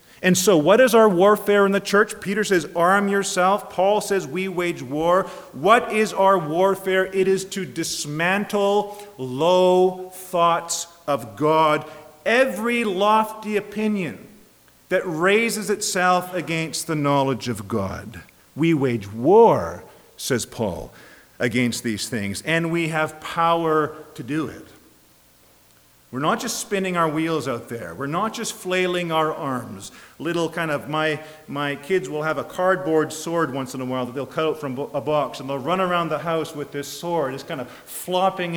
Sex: male